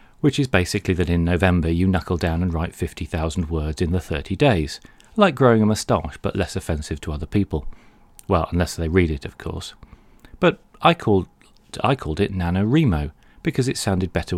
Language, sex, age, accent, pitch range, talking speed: English, male, 40-59, British, 85-135 Hz, 190 wpm